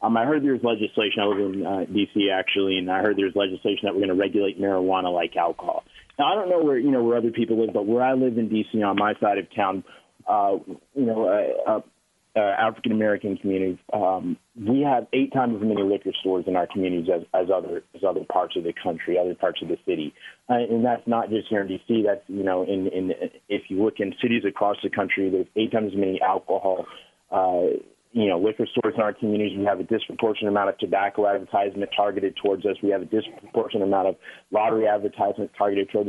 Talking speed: 230 wpm